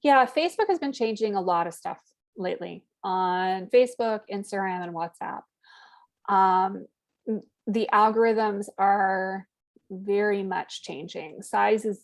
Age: 20-39